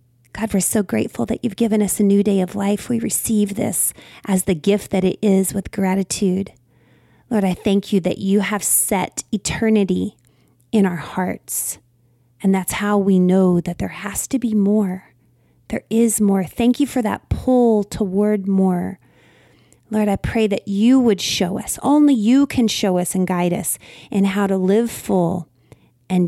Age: 30-49